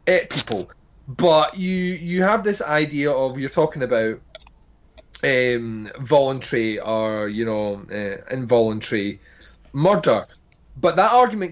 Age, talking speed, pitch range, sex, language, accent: 30-49, 120 wpm, 115-170 Hz, male, English, British